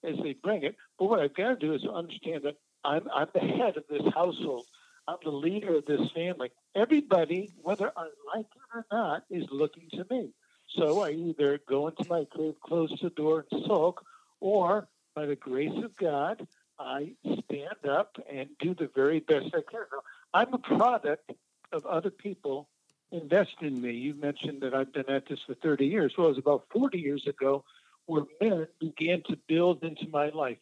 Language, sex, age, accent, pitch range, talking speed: English, male, 60-79, American, 145-190 Hz, 195 wpm